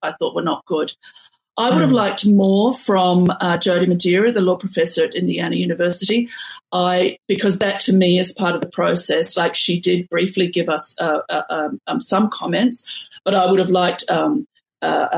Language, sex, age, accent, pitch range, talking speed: English, female, 40-59, Australian, 175-215 Hz, 190 wpm